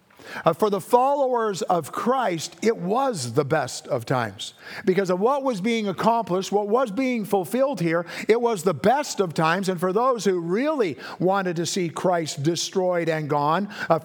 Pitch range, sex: 155-185 Hz, male